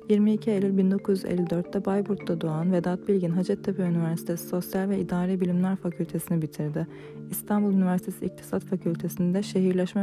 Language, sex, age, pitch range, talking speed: Turkish, female, 30-49, 175-195 Hz, 120 wpm